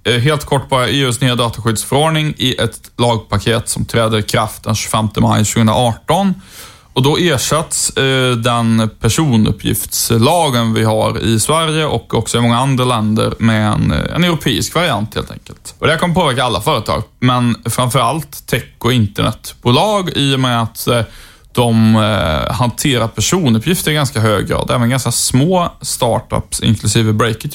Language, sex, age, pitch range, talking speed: Swedish, male, 10-29, 115-140 Hz, 145 wpm